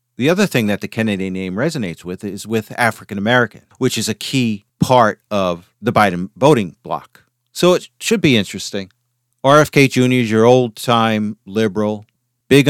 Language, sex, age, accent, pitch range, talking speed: English, male, 50-69, American, 105-135 Hz, 165 wpm